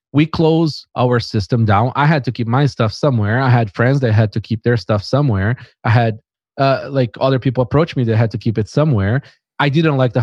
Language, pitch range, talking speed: English, 115-145 Hz, 235 wpm